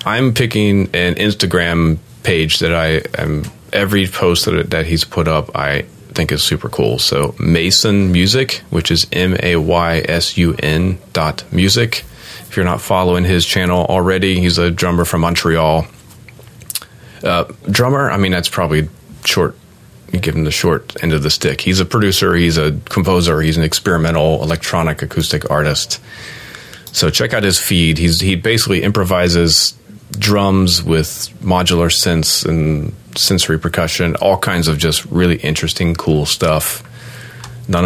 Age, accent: 30-49, American